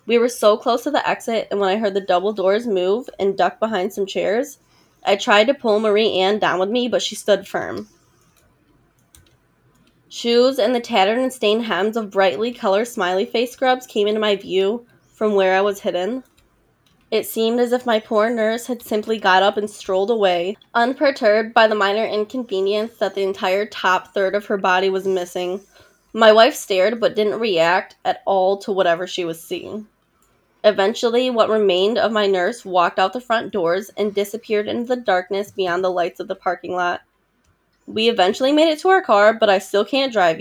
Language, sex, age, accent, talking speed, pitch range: English, female, 10-29, American, 195 wpm, 190-225 Hz